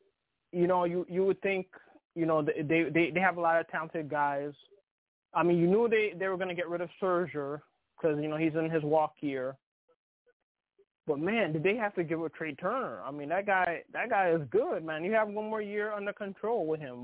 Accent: American